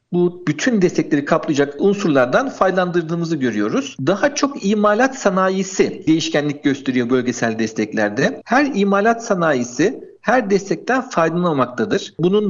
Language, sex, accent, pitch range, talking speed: Turkish, male, native, 160-220 Hz, 105 wpm